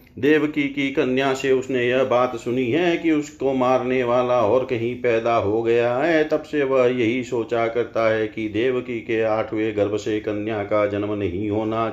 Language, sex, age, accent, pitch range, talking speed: Hindi, male, 50-69, native, 115-150 Hz, 185 wpm